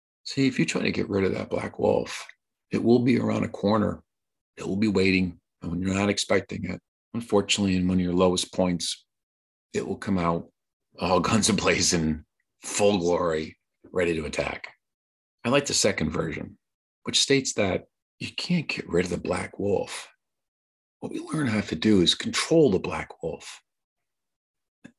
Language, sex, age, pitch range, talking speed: English, male, 50-69, 90-120 Hz, 180 wpm